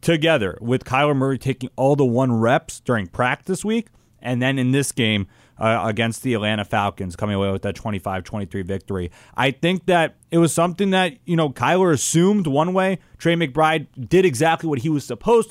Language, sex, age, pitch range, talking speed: English, male, 30-49, 120-160 Hz, 195 wpm